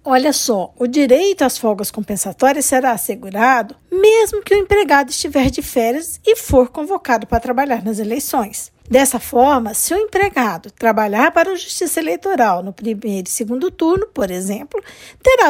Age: 50-69